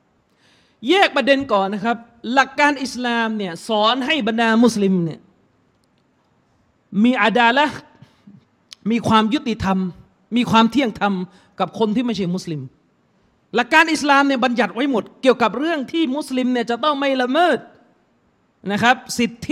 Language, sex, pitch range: Thai, male, 230-300 Hz